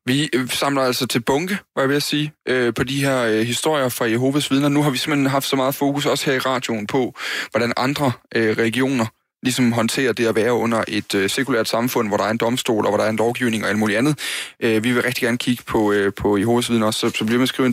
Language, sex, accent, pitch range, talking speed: Danish, male, native, 110-135 Hz, 240 wpm